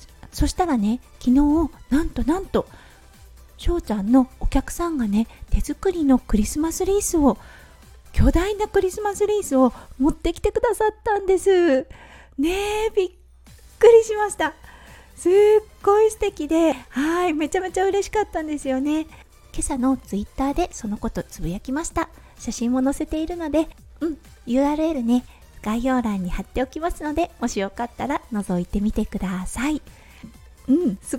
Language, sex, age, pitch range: Japanese, female, 40-59, 240-335 Hz